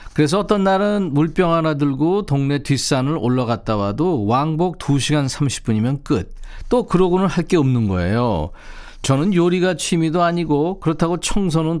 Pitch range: 120-175 Hz